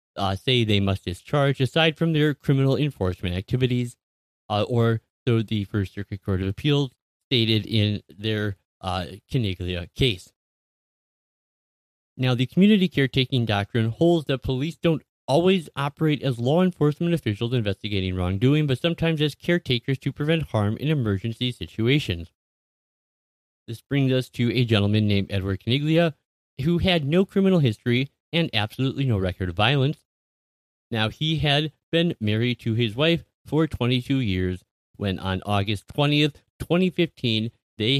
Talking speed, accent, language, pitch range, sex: 140 wpm, American, English, 105-145 Hz, male